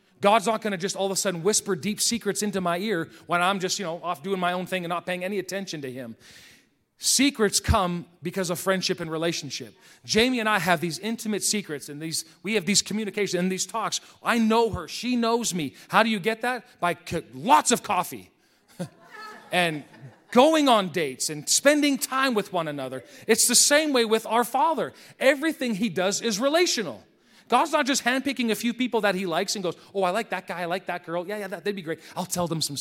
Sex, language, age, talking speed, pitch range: male, English, 40-59, 225 wpm, 180-245 Hz